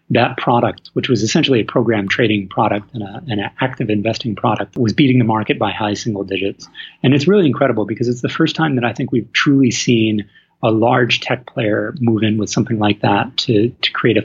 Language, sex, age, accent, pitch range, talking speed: English, male, 30-49, American, 110-135 Hz, 215 wpm